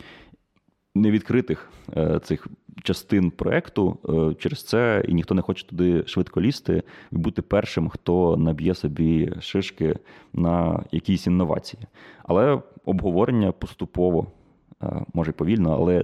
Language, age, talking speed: Ukrainian, 30-49, 110 wpm